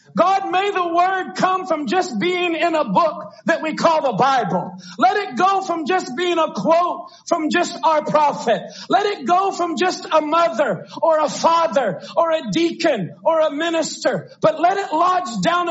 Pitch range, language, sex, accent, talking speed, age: 265-335 Hz, English, male, American, 185 wpm, 40-59